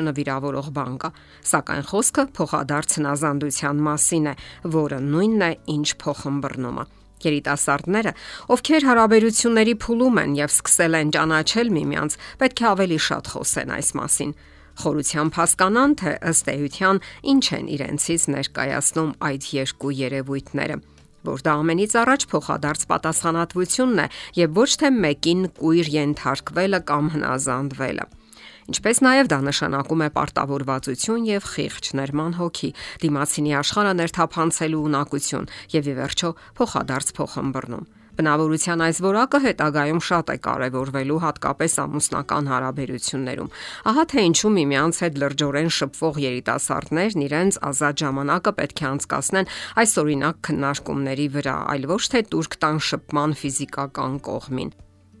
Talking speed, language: 75 wpm, English